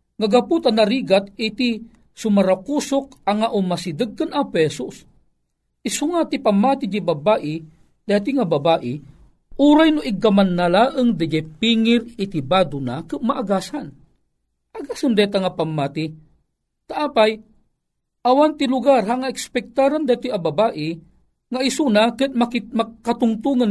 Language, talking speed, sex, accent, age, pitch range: Filipino, 110 wpm, male, native, 40-59, 140-230 Hz